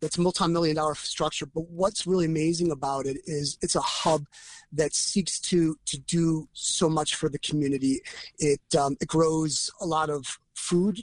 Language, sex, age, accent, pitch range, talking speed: English, male, 30-49, American, 145-175 Hz, 175 wpm